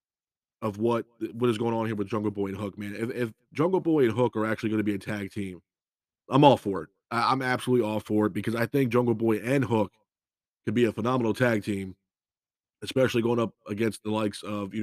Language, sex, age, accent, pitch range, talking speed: English, male, 30-49, American, 105-125 Hz, 230 wpm